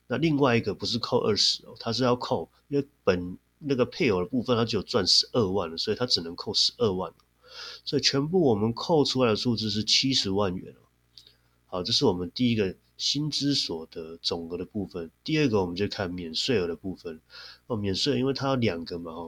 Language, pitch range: Chinese, 90-125 Hz